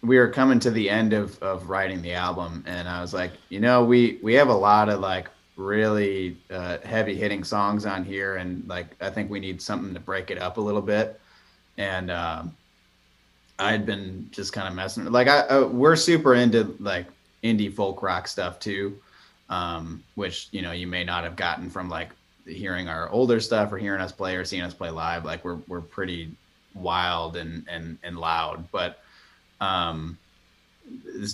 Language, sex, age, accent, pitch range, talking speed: English, male, 20-39, American, 85-100 Hz, 195 wpm